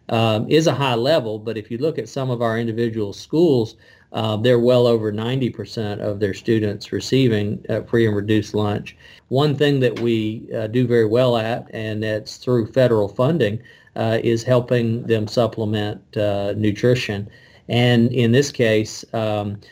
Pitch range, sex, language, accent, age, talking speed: 110-125 Hz, male, English, American, 40-59, 165 wpm